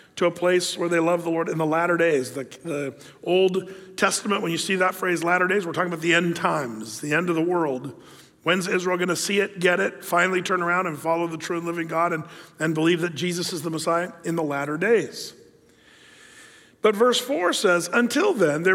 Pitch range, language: 160-195 Hz, English